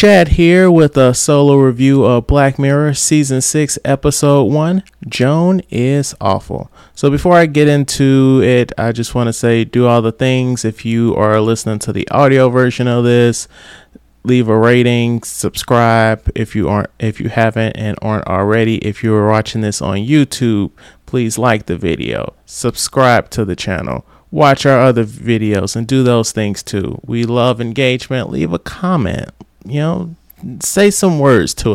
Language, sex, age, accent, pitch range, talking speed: English, male, 30-49, American, 110-135 Hz, 170 wpm